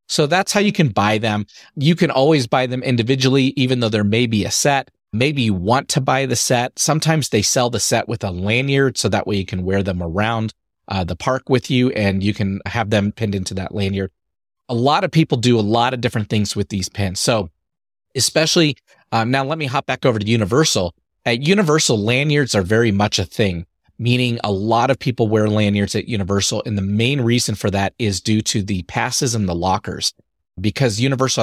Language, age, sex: English, 30-49, male